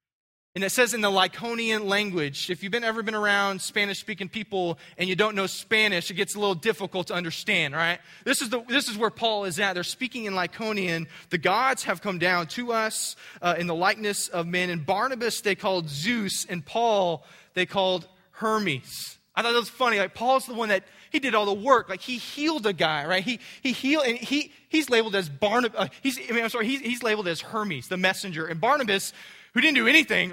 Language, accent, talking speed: English, American, 220 wpm